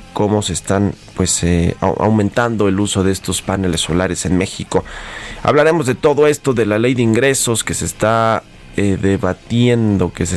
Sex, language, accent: male, Spanish, Mexican